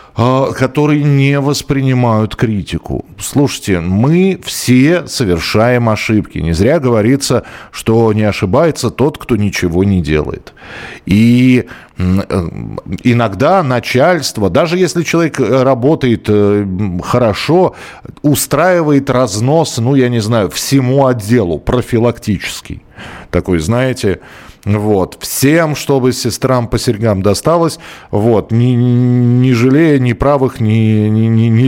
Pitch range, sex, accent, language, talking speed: 105-140 Hz, male, native, Russian, 105 wpm